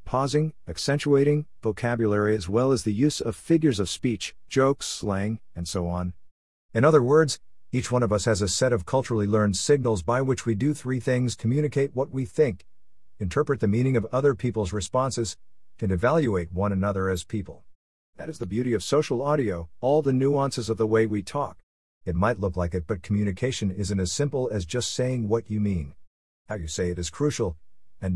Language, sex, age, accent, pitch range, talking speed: English, male, 50-69, American, 95-130 Hz, 195 wpm